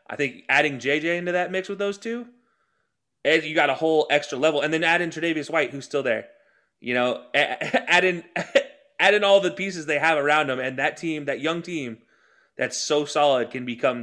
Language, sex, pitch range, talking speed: English, male, 140-180 Hz, 210 wpm